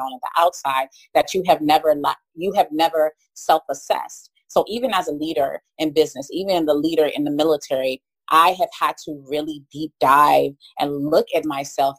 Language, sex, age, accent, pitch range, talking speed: English, female, 30-49, American, 155-230 Hz, 175 wpm